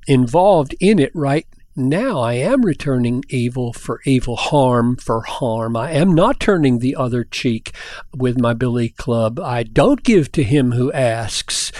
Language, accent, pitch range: English, American, 125-165 Hz